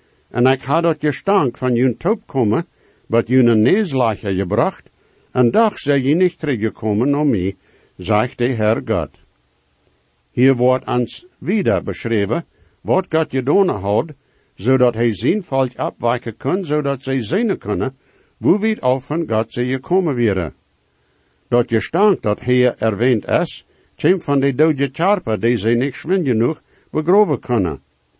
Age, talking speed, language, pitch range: 60-79, 160 wpm, English, 115-145 Hz